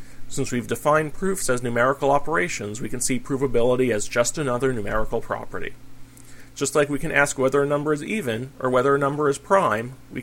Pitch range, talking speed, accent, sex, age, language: 120-145 Hz, 195 wpm, American, male, 40-59, English